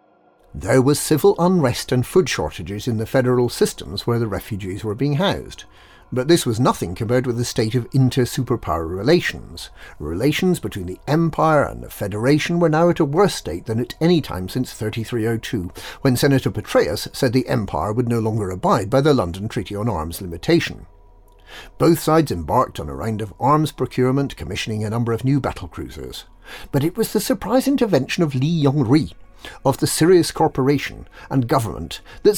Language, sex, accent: English, male, British